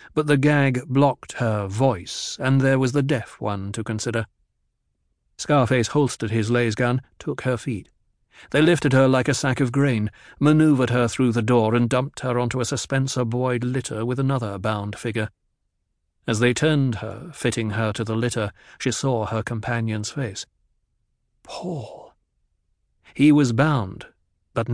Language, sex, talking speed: English, male, 160 wpm